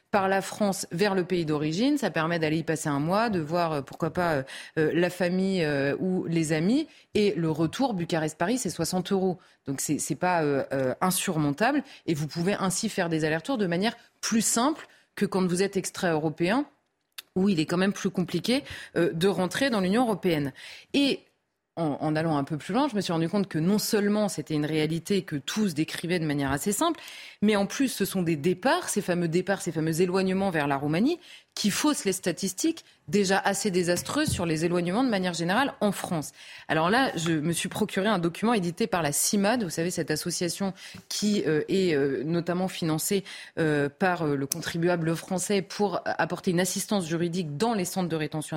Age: 30-49